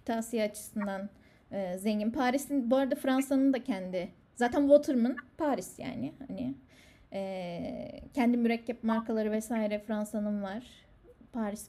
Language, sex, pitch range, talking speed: Turkish, female, 205-275 Hz, 120 wpm